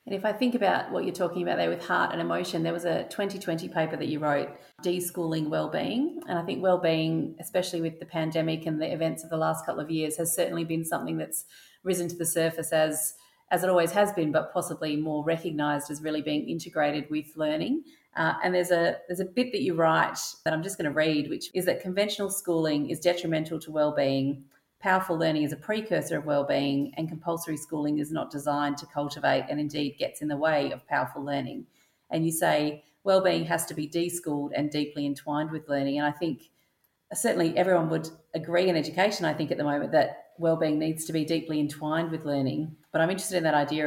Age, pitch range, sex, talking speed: 40-59, 150-170 Hz, female, 215 wpm